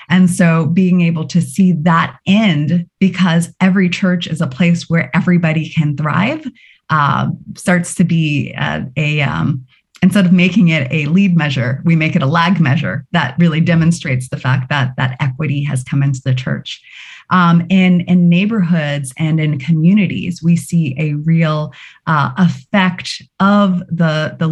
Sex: female